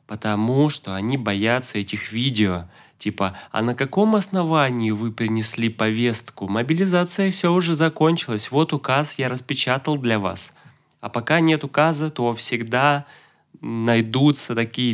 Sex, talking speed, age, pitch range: male, 130 wpm, 20-39, 105-130 Hz